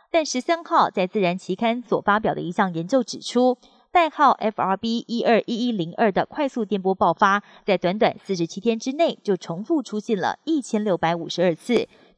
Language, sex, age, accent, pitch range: Chinese, female, 30-49, native, 190-250 Hz